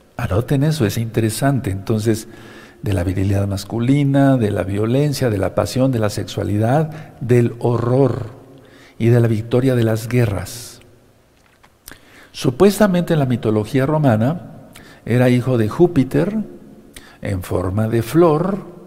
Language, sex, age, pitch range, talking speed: Spanish, male, 50-69, 110-140 Hz, 125 wpm